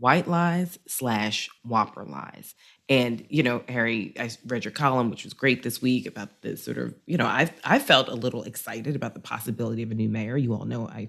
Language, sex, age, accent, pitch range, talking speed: English, female, 30-49, American, 110-150 Hz, 215 wpm